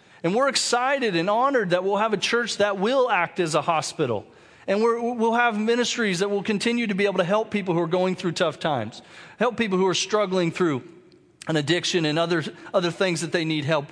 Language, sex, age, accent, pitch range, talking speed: English, male, 40-59, American, 160-205 Hz, 225 wpm